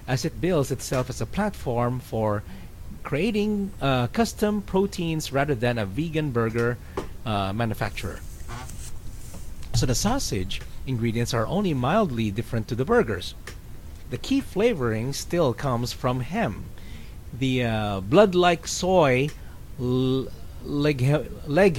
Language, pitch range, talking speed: English, 105-145 Hz, 115 wpm